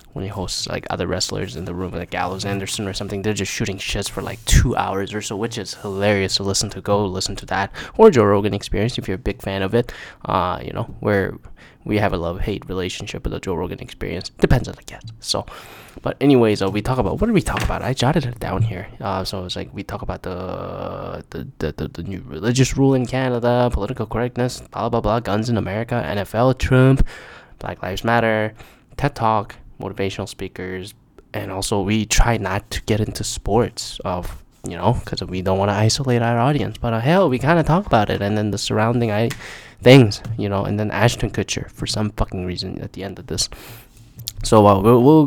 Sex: male